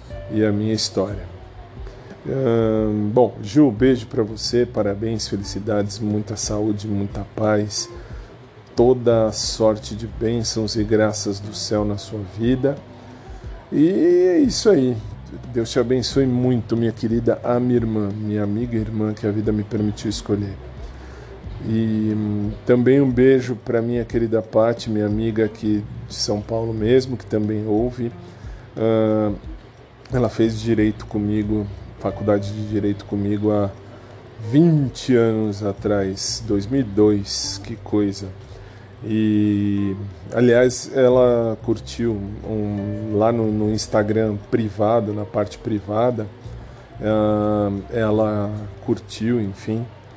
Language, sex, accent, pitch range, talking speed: Portuguese, male, Brazilian, 105-115 Hz, 125 wpm